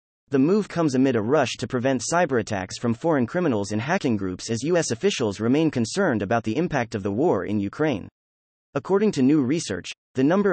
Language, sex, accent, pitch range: English, male, American, 105-160 Hz